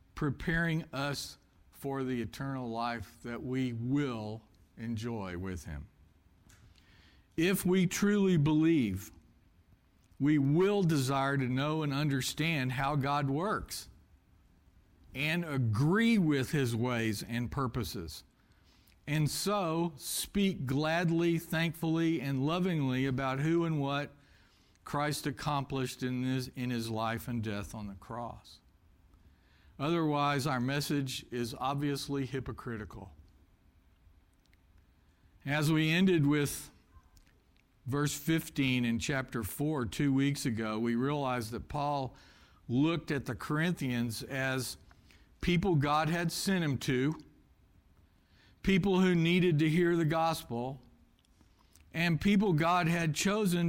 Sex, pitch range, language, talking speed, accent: male, 95-155 Hz, English, 110 wpm, American